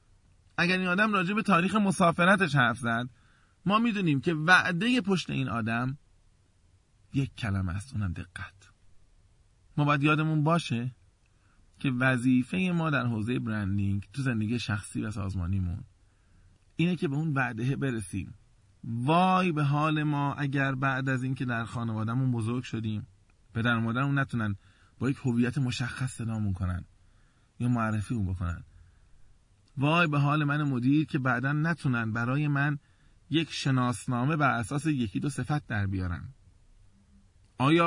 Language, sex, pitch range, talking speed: Persian, male, 105-150 Hz, 140 wpm